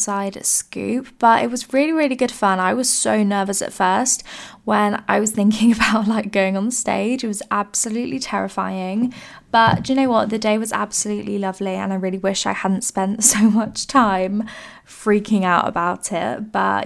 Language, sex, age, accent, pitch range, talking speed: English, female, 10-29, British, 195-240 Hz, 190 wpm